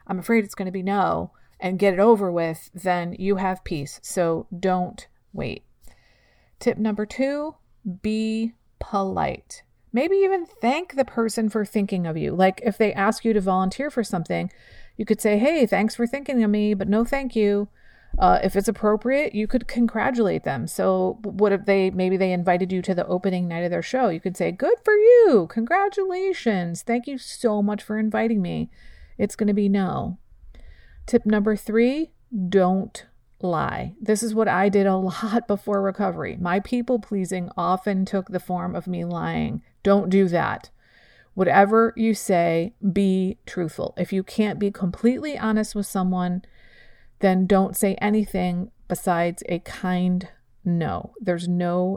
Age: 40-59